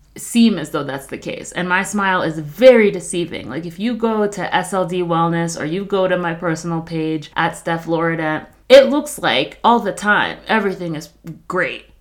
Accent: American